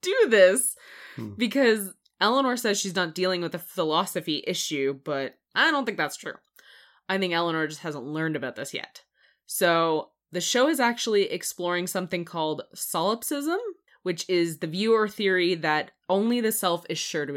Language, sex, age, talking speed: English, female, 20-39, 165 wpm